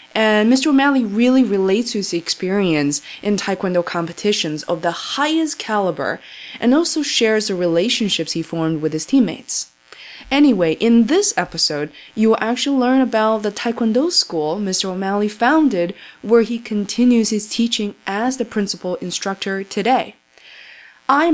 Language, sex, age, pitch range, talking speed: English, female, 20-39, 170-230 Hz, 145 wpm